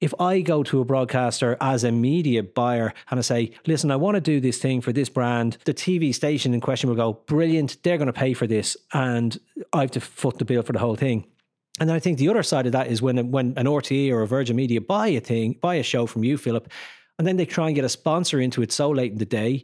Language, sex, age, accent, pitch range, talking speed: English, male, 30-49, Irish, 125-160 Hz, 275 wpm